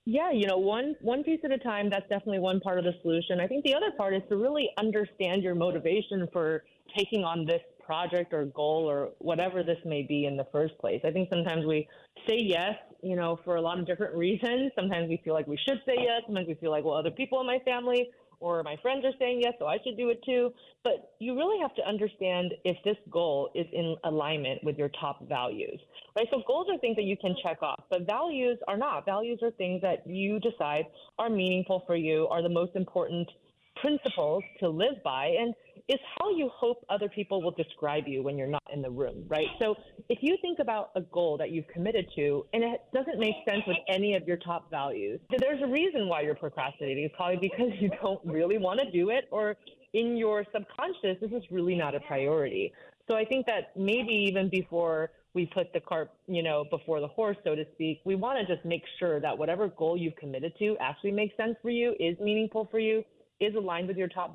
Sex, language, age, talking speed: female, English, 30-49, 225 wpm